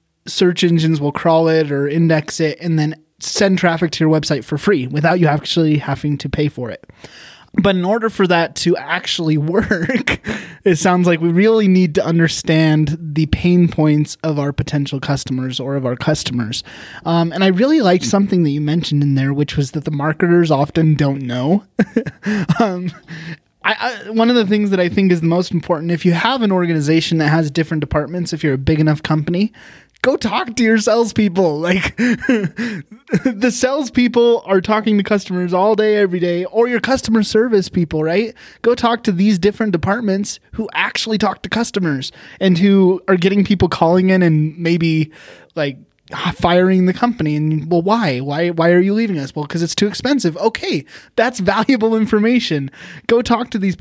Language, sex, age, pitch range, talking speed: English, male, 20-39, 155-205 Hz, 185 wpm